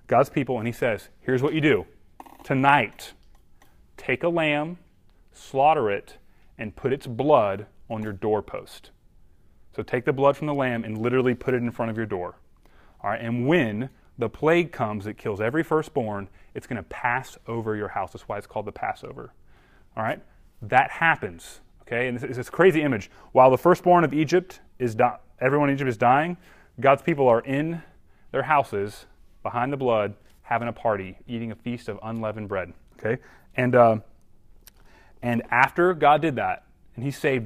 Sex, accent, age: male, American, 30-49